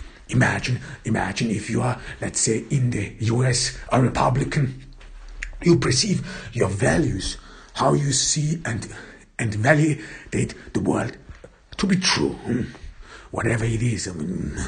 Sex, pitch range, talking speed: male, 105-130 Hz, 135 wpm